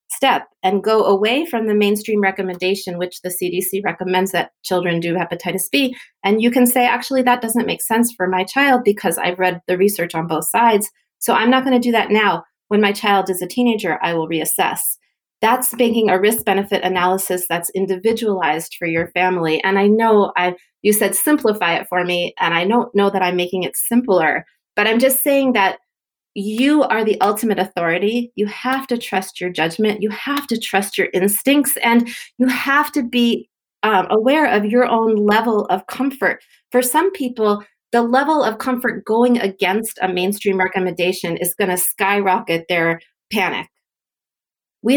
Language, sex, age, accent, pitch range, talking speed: English, female, 30-49, American, 185-240 Hz, 185 wpm